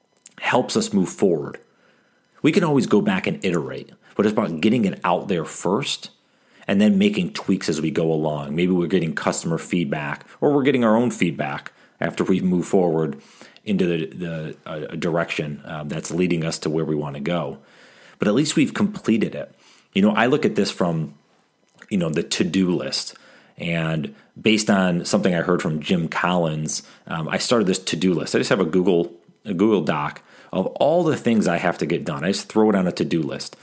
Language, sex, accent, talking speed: English, male, American, 210 wpm